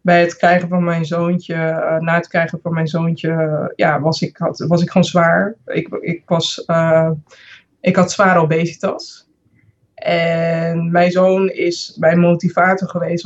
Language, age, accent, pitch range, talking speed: Dutch, 20-39, Dutch, 165-185 Hz, 160 wpm